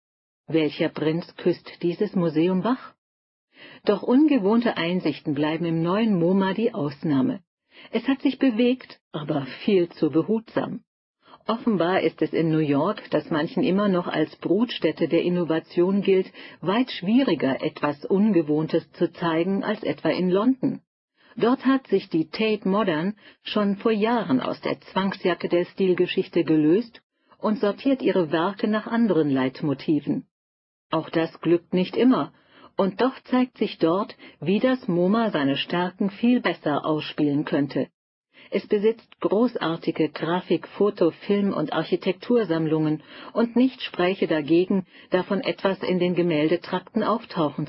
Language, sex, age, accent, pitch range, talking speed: German, female, 50-69, German, 160-220 Hz, 135 wpm